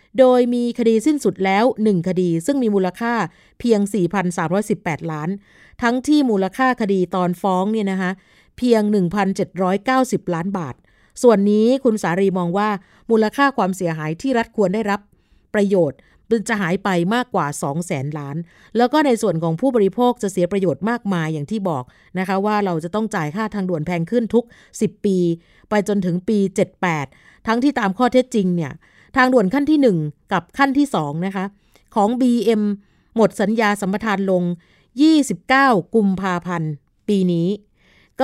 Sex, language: female, Thai